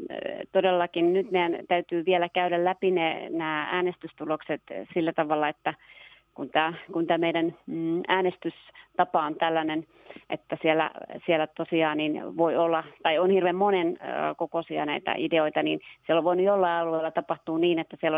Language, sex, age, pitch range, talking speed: Finnish, female, 30-49, 155-180 Hz, 145 wpm